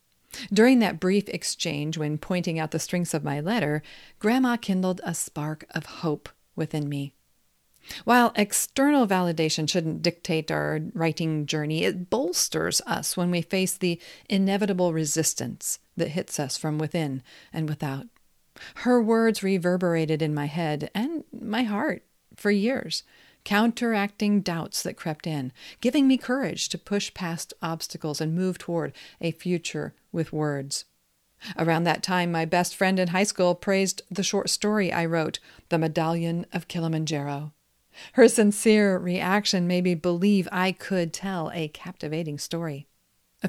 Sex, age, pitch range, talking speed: female, 40-59, 160-205 Hz, 145 wpm